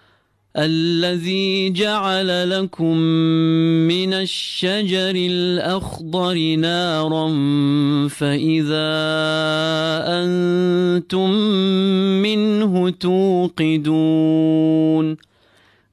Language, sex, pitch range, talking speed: English, male, 140-175 Hz, 40 wpm